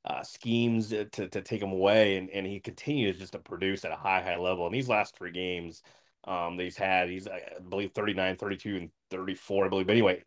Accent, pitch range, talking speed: American, 95-115 Hz, 205 wpm